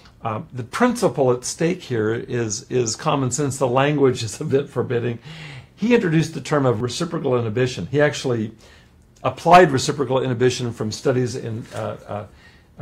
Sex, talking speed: male, 155 wpm